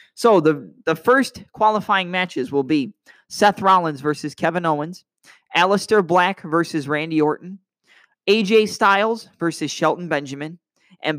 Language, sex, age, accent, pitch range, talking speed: English, male, 20-39, American, 150-185 Hz, 130 wpm